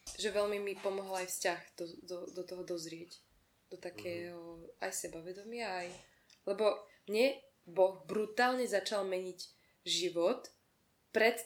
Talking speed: 120 wpm